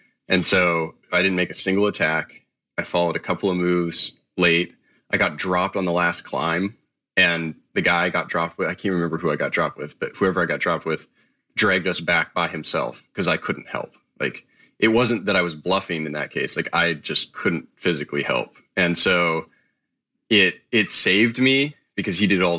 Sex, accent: male, American